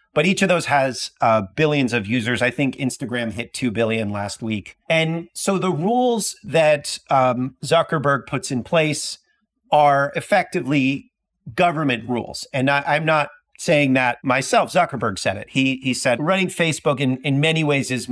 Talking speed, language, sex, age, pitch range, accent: 170 wpm, English, male, 40-59, 115-150 Hz, American